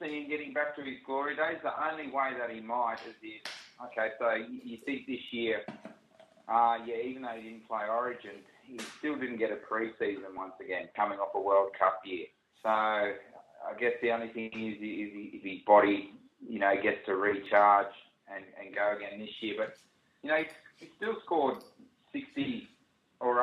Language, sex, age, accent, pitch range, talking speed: English, male, 30-49, Australian, 105-130 Hz, 185 wpm